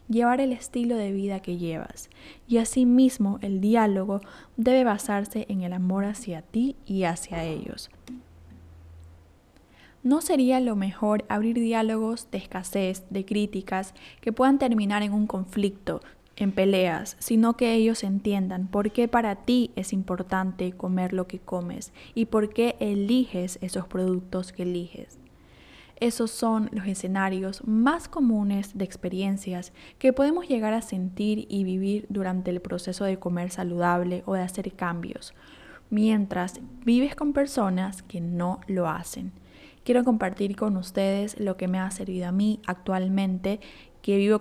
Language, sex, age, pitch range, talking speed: Spanish, female, 10-29, 185-225 Hz, 145 wpm